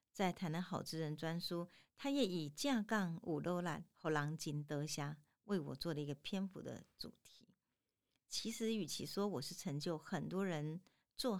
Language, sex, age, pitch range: Chinese, female, 50-69, 150-200 Hz